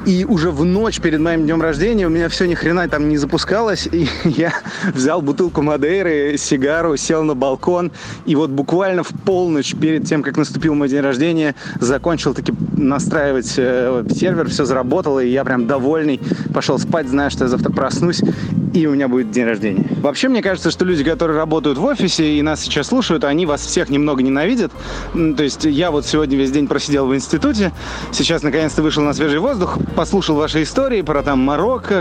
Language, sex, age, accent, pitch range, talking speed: Russian, male, 20-39, native, 145-180 Hz, 185 wpm